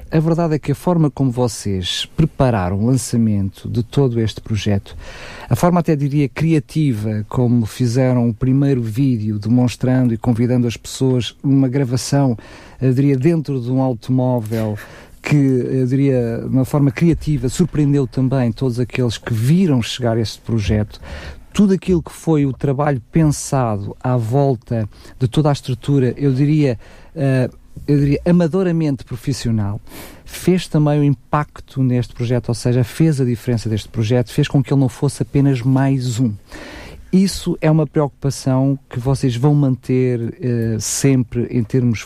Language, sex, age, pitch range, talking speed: Portuguese, male, 50-69, 120-140 Hz, 155 wpm